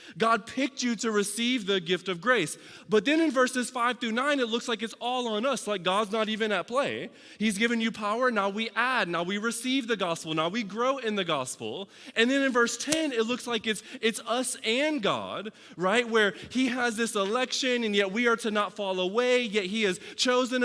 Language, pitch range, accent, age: English, 195-240 Hz, American, 20-39